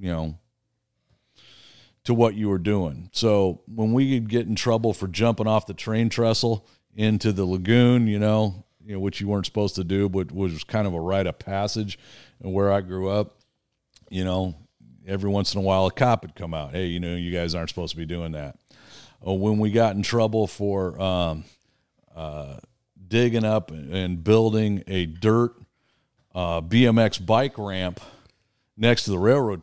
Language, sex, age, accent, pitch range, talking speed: English, male, 40-59, American, 90-115 Hz, 180 wpm